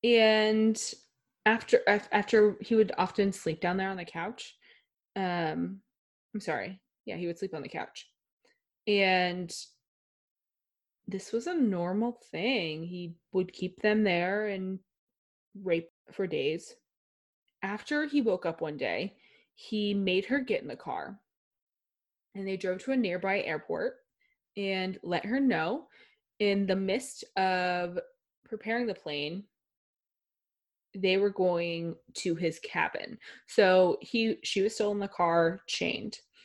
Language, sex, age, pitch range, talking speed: English, female, 20-39, 180-230 Hz, 135 wpm